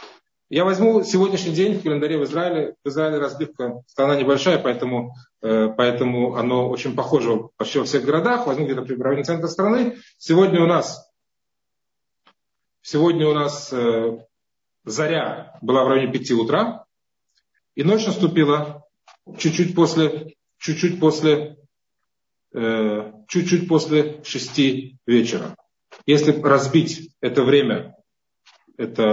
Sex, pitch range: male, 125-170 Hz